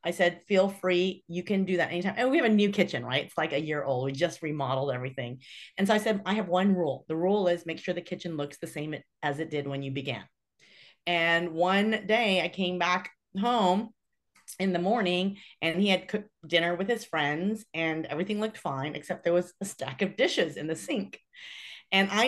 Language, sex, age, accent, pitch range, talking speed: English, female, 30-49, American, 155-200 Hz, 225 wpm